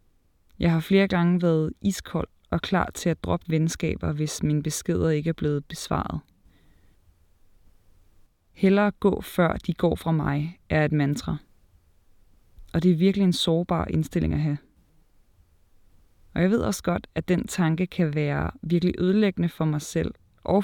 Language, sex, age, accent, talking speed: Danish, female, 20-39, native, 155 wpm